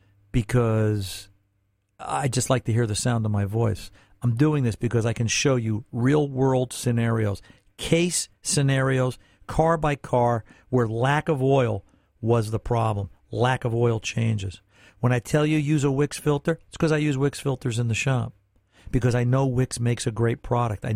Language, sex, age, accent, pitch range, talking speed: English, male, 50-69, American, 105-135 Hz, 175 wpm